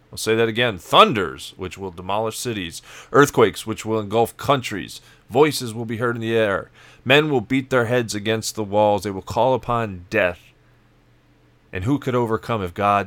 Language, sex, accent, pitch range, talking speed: English, male, American, 100-115 Hz, 185 wpm